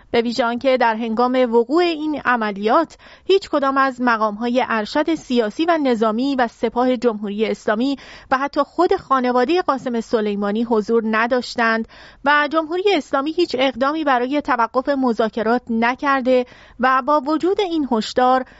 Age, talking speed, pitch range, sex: 30-49, 140 wpm, 230-290 Hz, female